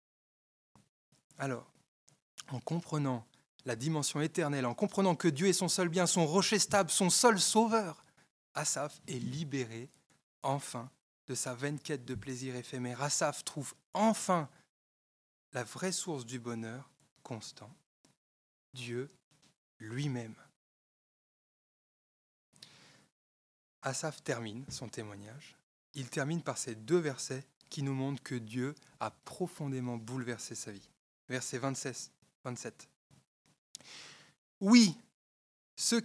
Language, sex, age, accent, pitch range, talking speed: French, male, 20-39, French, 130-180 Hz, 115 wpm